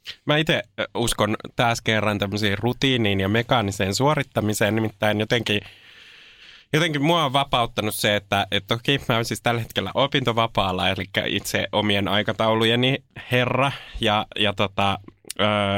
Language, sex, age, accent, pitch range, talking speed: Finnish, male, 20-39, native, 105-125 Hz, 135 wpm